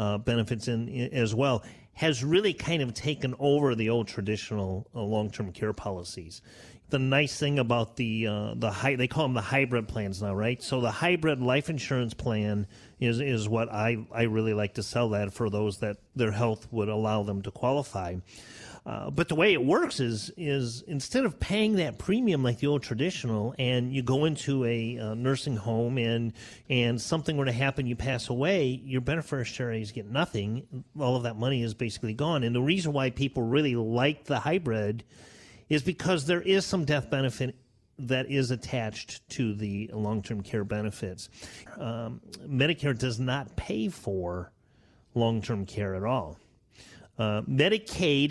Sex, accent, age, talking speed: male, American, 40-59, 175 wpm